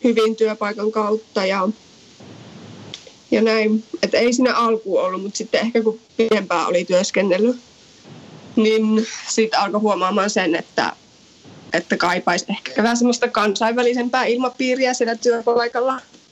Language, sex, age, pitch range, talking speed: Finnish, female, 20-39, 205-235 Hz, 120 wpm